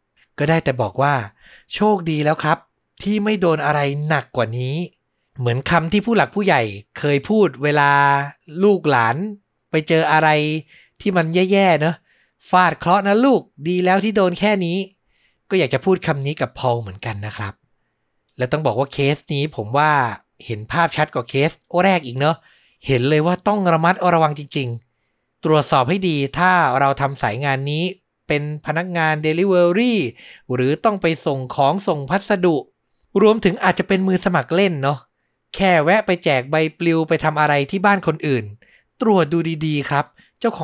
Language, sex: Thai, male